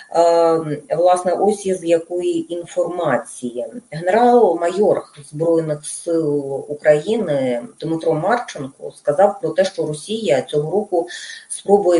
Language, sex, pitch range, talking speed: Russian, female, 150-200 Hz, 100 wpm